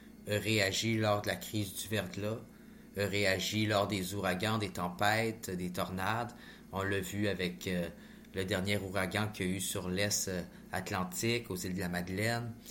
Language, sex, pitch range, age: French, male, 95-115 Hz, 30-49